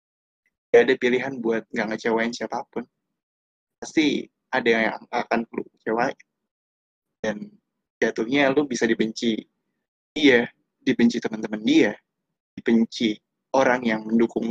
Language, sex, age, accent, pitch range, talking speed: Indonesian, male, 20-39, native, 115-130 Hz, 105 wpm